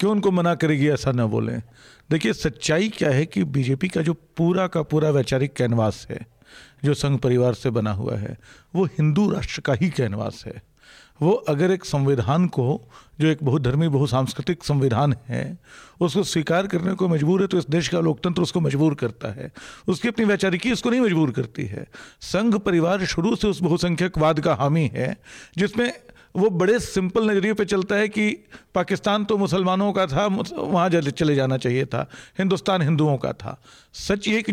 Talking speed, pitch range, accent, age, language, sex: 180 wpm, 145-200 Hz, native, 50-69, Hindi, male